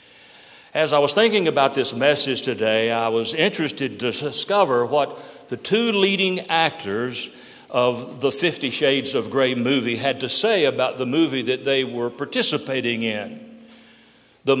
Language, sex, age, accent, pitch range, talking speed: English, male, 60-79, American, 120-185 Hz, 150 wpm